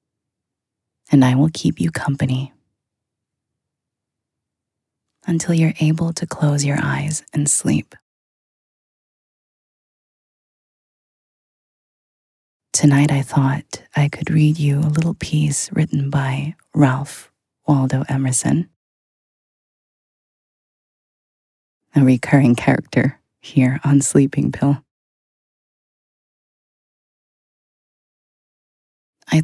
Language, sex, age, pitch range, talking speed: English, female, 20-39, 135-160 Hz, 75 wpm